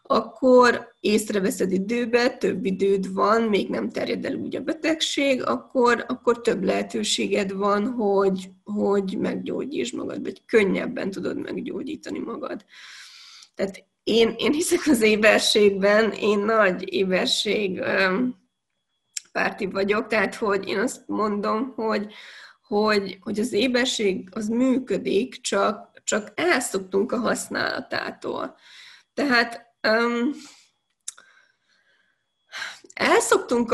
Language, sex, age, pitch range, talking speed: Hungarian, female, 20-39, 195-245 Hz, 100 wpm